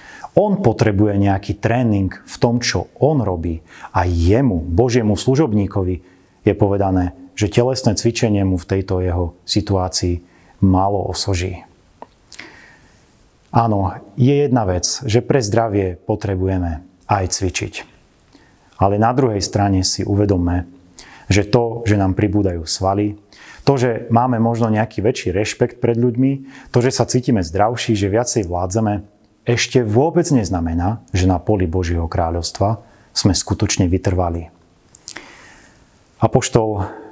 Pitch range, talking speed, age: 95-115 Hz, 125 wpm, 30-49